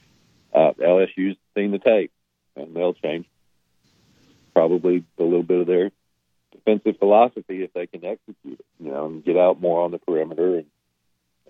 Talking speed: 160 wpm